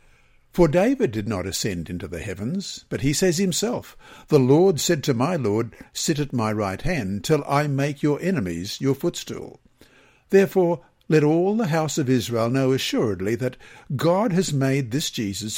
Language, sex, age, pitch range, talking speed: English, male, 60-79, 115-165 Hz, 175 wpm